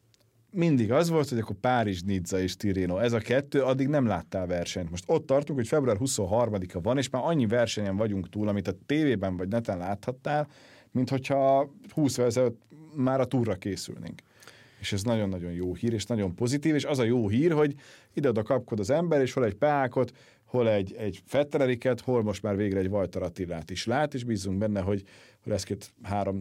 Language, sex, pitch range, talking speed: Hungarian, male, 95-125 Hz, 195 wpm